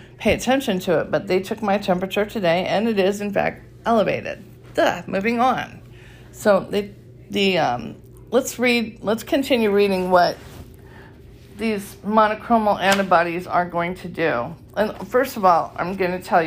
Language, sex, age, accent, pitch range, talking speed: English, female, 50-69, American, 160-200 Hz, 155 wpm